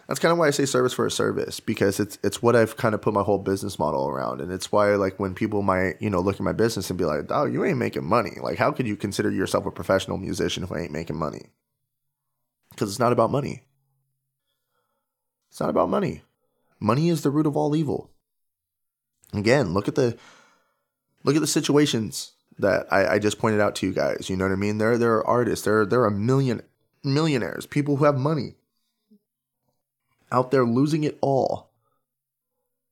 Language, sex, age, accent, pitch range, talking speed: English, male, 20-39, American, 105-140 Hz, 210 wpm